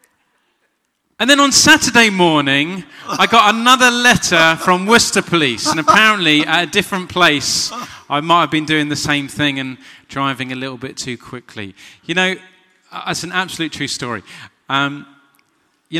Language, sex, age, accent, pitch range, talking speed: English, male, 30-49, British, 135-180 Hz, 160 wpm